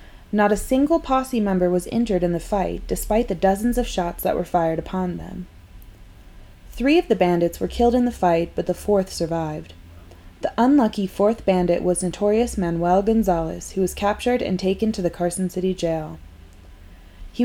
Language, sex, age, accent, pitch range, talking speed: English, female, 20-39, American, 165-220 Hz, 180 wpm